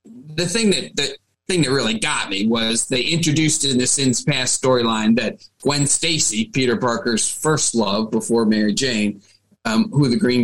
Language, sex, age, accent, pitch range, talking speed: English, male, 30-49, American, 125-160 Hz, 180 wpm